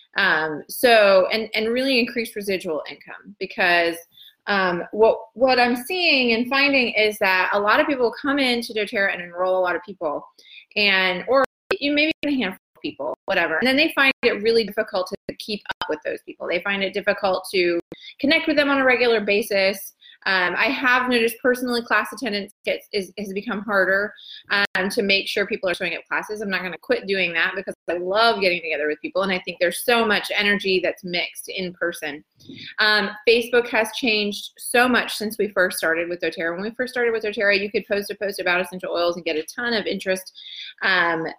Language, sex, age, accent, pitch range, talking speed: English, female, 20-39, American, 185-235 Hz, 205 wpm